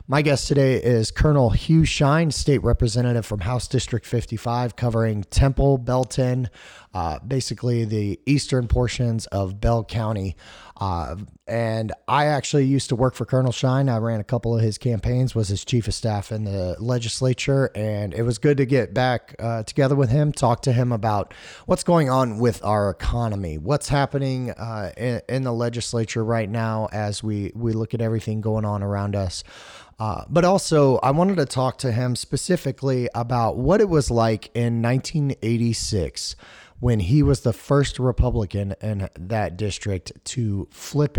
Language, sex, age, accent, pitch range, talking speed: English, male, 30-49, American, 105-130 Hz, 170 wpm